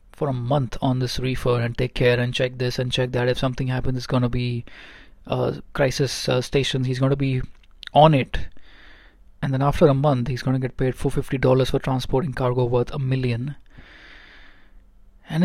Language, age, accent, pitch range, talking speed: English, 20-39, Indian, 125-140 Hz, 185 wpm